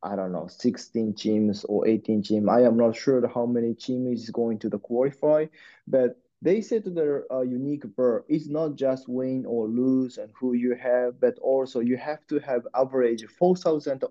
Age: 20-39